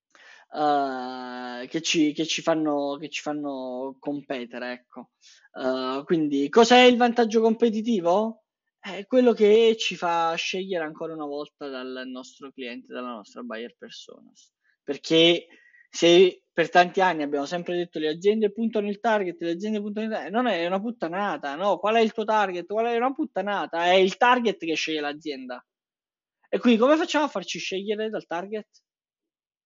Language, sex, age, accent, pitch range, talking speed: Italian, male, 20-39, native, 155-225 Hz, 160 wpm